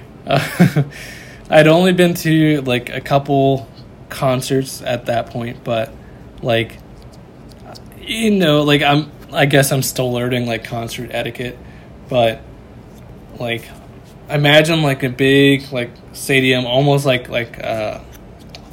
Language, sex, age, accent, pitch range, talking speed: English, male, 20-39, American, 115-135 Hz, 120 wpm